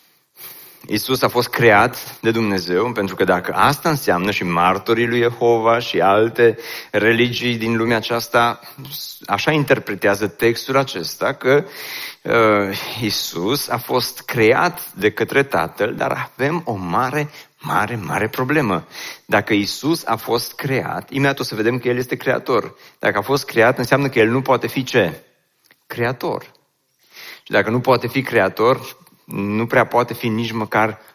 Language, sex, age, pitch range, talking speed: Romanian, male, 30-49, 100-130 Hz, 150 wpm